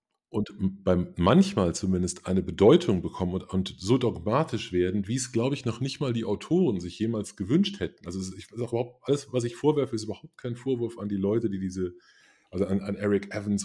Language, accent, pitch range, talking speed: German, German, 95-125 Hz, 210 wpm